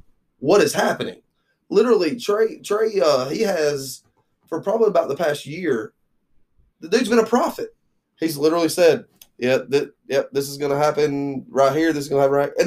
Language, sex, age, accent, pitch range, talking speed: English, male, 20-39, American, 135-205 Hz, 185 wpm